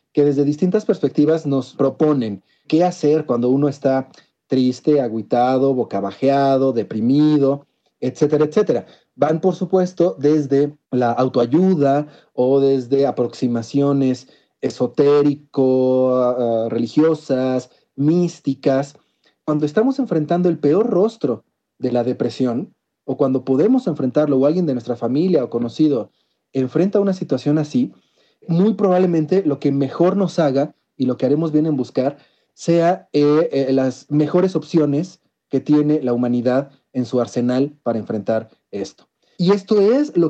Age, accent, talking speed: 30-49, Mexican, 130 wpm